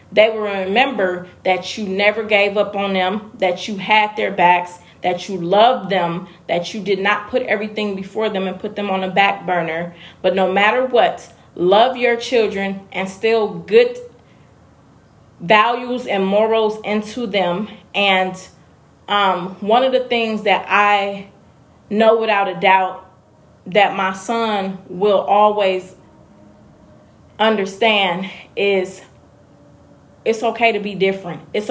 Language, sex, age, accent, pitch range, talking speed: English, female, 20-39, American, 185-220 Hz, 140 wpm